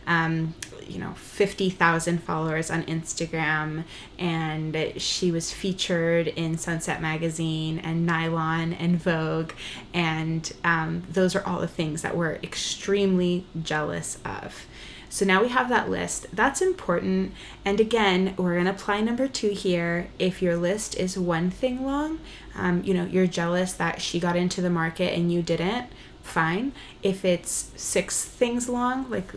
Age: 20-39